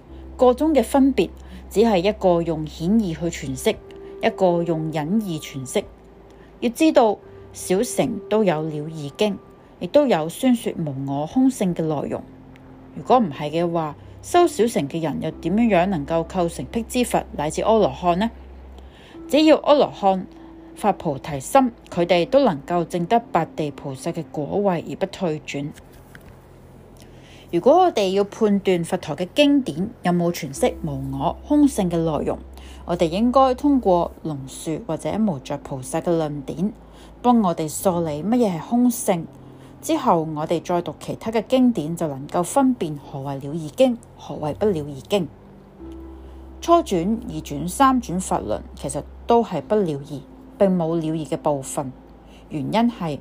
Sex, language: female, Chinese